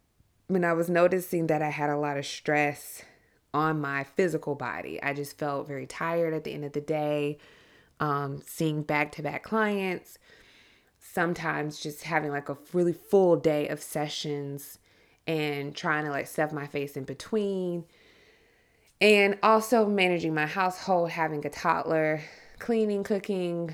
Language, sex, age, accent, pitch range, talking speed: English, female, 20-39, American, 145-180 Hz, 155 wpm